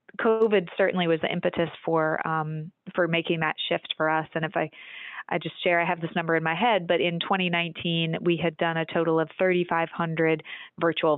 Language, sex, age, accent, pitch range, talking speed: English, female, 20-39, American, 160-180 Hz, 200 wpm